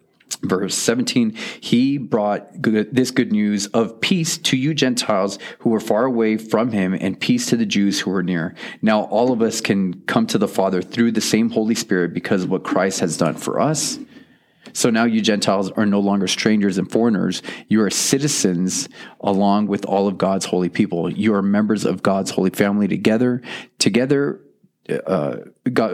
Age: 30-49